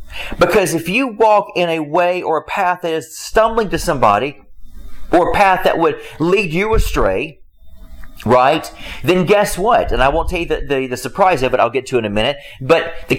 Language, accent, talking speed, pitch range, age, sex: English, American, 215 wpm, 155-210 Hz, 40-59, male